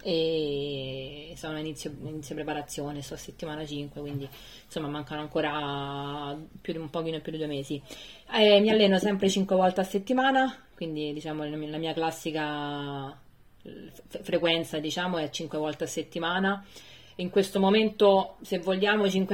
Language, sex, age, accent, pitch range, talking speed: Italian, female, 20-39, native, 150-180 Hz, 145 wpm